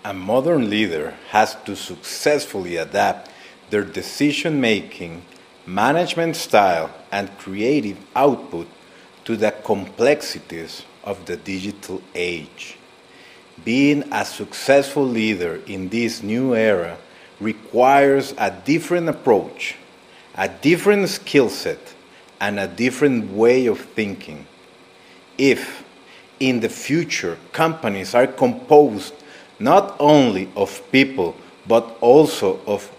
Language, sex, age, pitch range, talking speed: English, male, 40-59, 95-140 Hz, 105 wpm